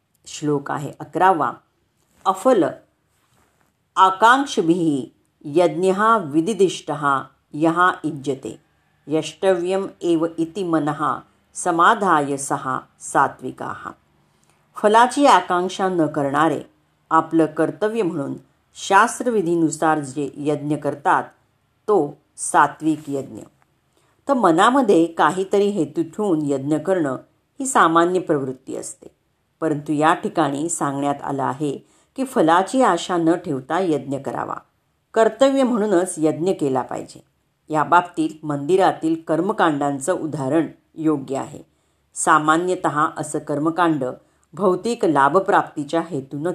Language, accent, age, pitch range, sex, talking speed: Marathi, native, 40-59, 145-185 Hz, female, 90 wpm